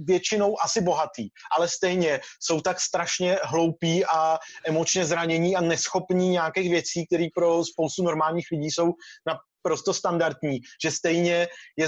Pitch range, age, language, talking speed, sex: 155-175 Hz, 30-49, Czech, 135 wpm, male